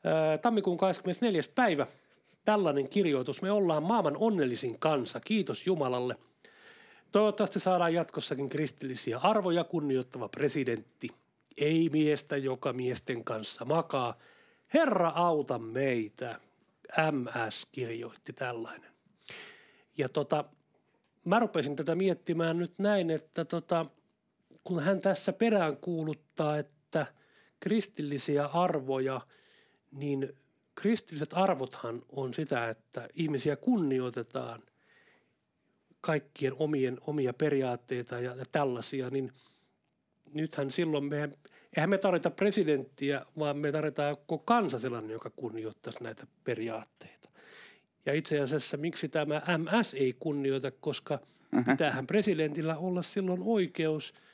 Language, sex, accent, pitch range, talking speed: English, male, Finnish, 135-180 Hz, 105 wpm